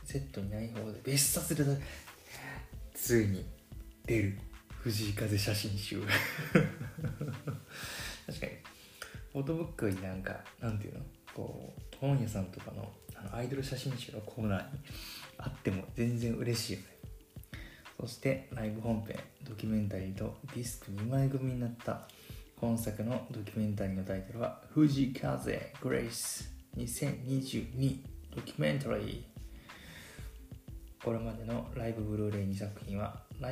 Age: 20-39